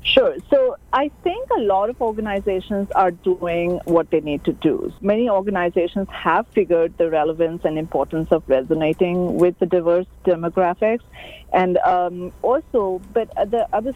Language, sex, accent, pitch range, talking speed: English, female, Indian, 175-235 Hz, 150 wpm